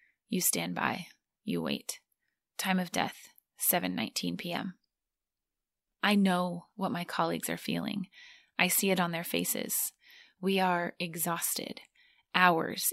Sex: female